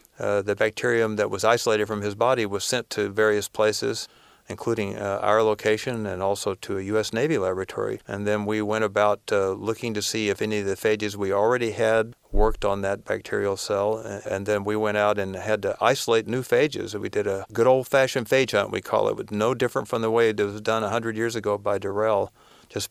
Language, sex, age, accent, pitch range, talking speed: English, male, 50-69, American, 100-115 Hz, 220 wpm